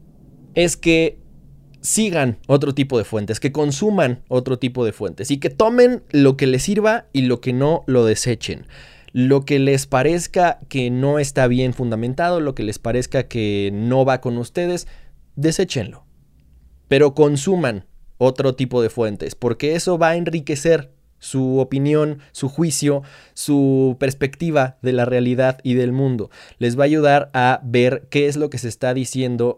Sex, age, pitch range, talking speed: male, 20-39, 120-145 Hz, 165 wpm